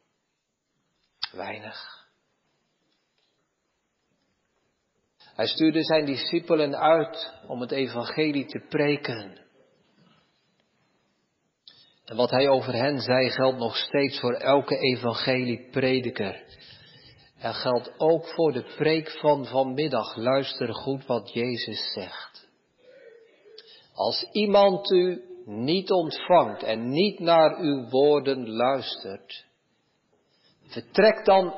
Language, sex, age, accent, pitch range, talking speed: Dutch, male, 50-69, Dutch, 130-195 Hz, 95 wpm